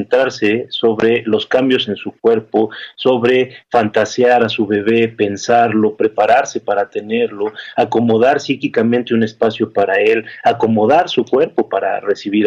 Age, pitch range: 40-59, 115-140 Hz